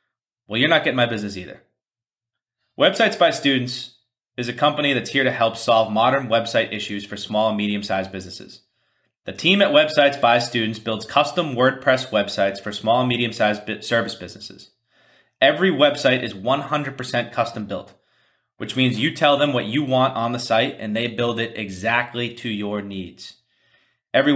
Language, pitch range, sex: English, 110-140 Hz, male